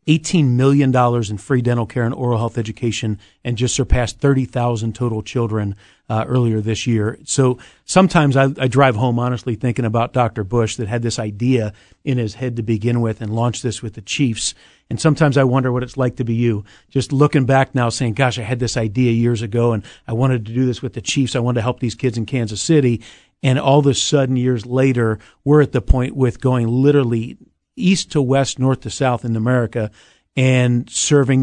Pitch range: 115-135 Hz